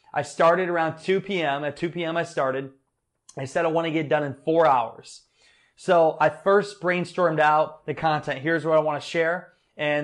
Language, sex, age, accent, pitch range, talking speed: English, male, 20-39, American, 140-160 Hz, 205 wpm